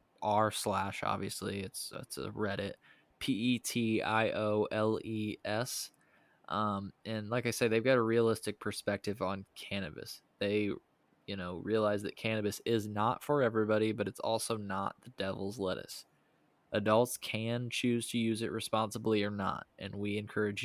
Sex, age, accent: male, 20-39, American